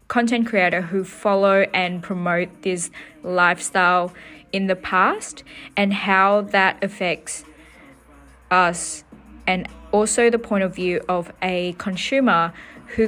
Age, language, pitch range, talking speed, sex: 20-39, English, 185-225 Hz, 120 wpm, female